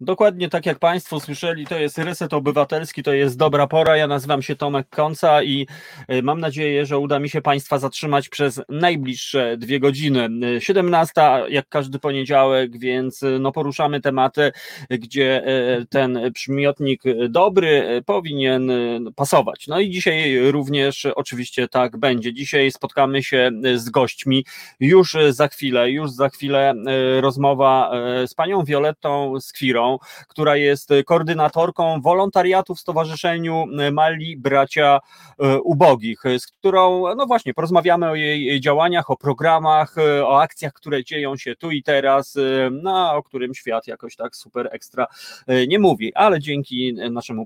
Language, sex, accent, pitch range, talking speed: Polish, male, native, 130-160 Hz, 135 wpm